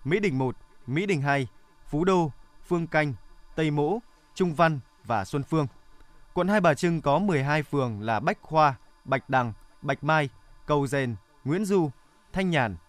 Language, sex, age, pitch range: Vietnamese, male, 20-39, 140-170 Hz